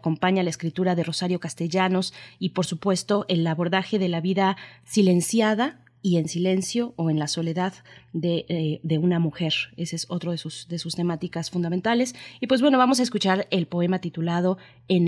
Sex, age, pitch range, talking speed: female, 20-39, 165-190 Hz, 180 wpm